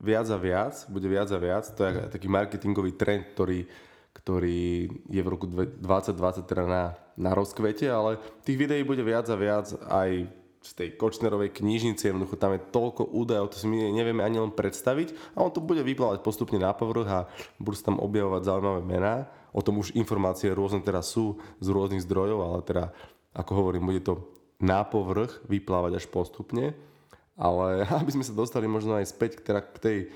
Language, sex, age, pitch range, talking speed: Slovak, male, 20-39, 95-110 Hz, 185 wpm